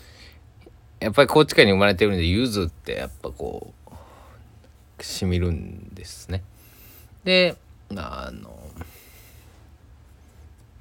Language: Japanese